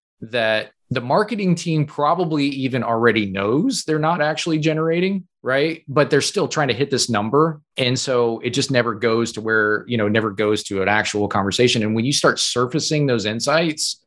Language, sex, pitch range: English, male, 110-145 Hz